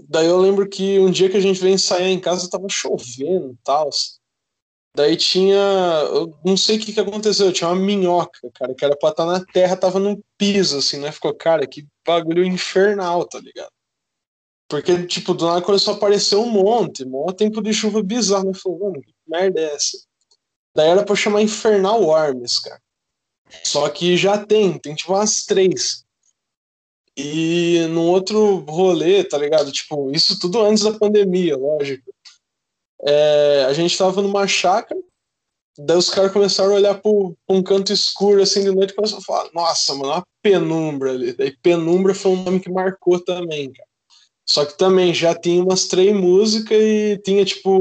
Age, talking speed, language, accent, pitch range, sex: 20-39, 185 wpm, Portuguese, Brazilian, 165-200 Hz, male